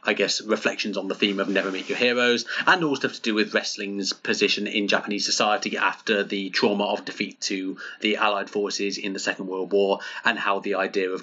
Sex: male